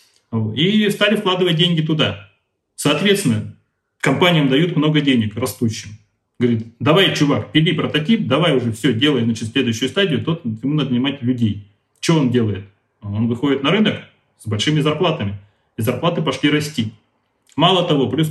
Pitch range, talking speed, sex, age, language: 115-155 Hz, 145 wpm, male, 30-49, Russian